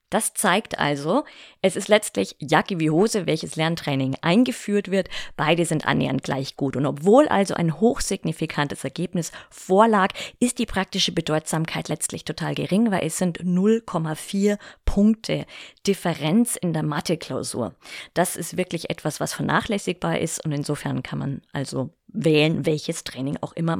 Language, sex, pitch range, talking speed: German, female, 150-195 Hz, 145 wpm